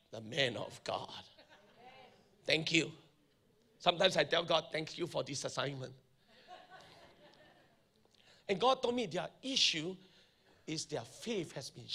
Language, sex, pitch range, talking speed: English, male, 155-225 Hz, 130 wpm